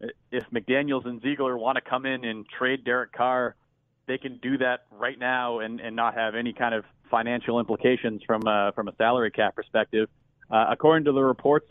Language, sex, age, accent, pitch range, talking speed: English, male, 30-49, American, 115-135 Hz, 200 wpm